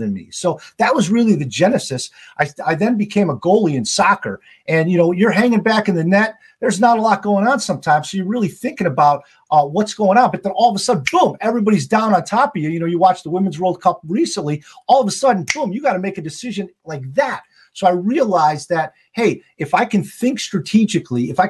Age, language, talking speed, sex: 40-59, English, 245 wpm, male